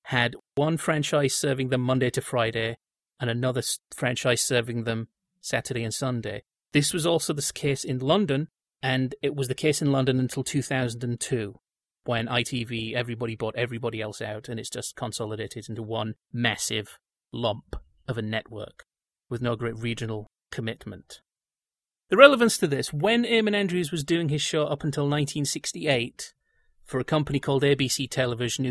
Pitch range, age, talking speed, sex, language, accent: 120-155 Hz, 30-49, 155 wpm, male, English, British